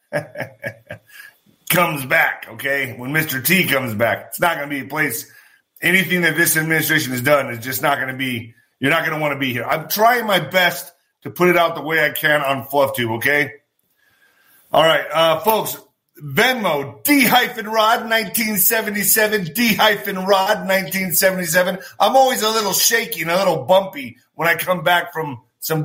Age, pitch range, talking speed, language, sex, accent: 30-49, 155-195 Hz, 170 wpm, English, male, American